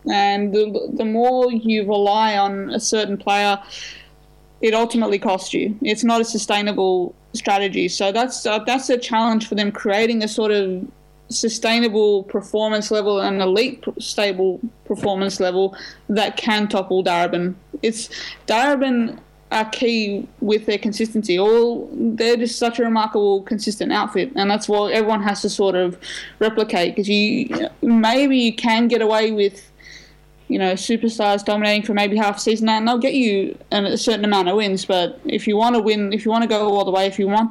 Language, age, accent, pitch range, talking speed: English, 20-39, Australian, 200-230 Hz, 175 wpm